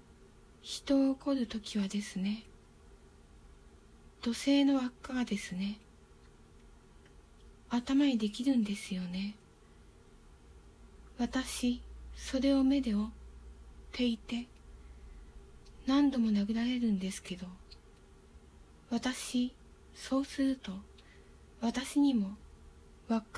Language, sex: Japanese, female